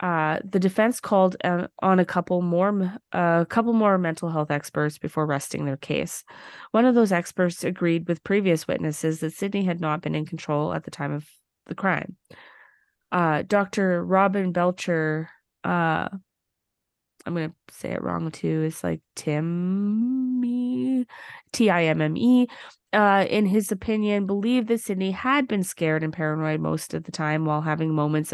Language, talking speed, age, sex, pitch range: English, 160 wpm, 20-39, female, 160-205 Hz